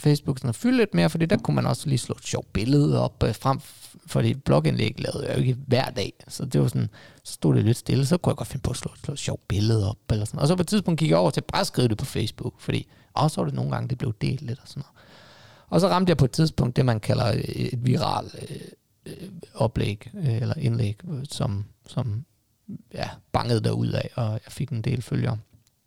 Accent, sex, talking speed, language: native, male, 255 wpm, Danish